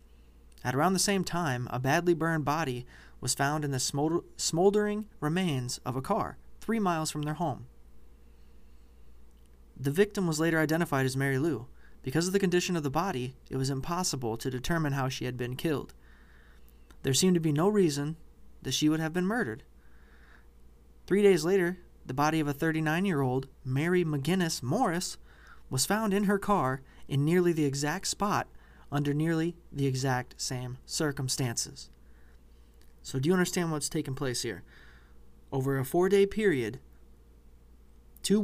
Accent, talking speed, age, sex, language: American, 155 wpm, 20-39, male, English